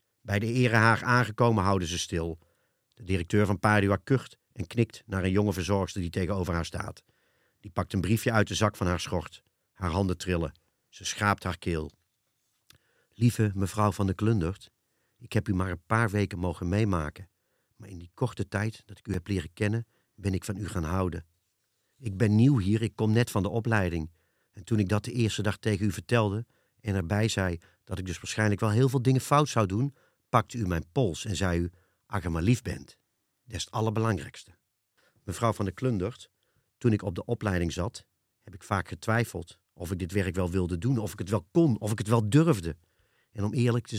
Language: Dutch